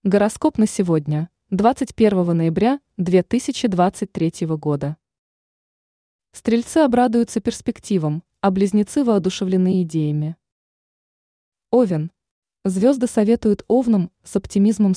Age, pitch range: 20-39, 170-220 Hz